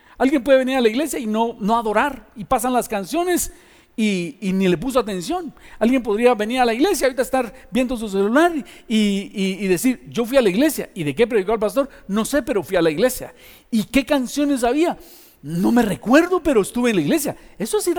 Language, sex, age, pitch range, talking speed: Spanish, male, 50-69, 185-265 Hz, 225 wpm